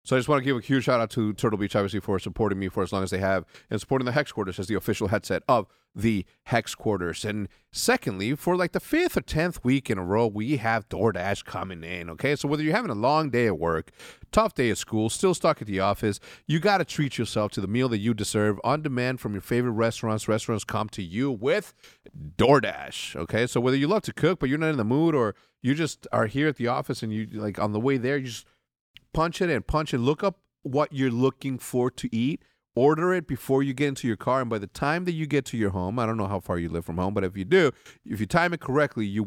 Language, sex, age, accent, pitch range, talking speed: English, male, 40-59, American, 105-145 Hz, 265 wpm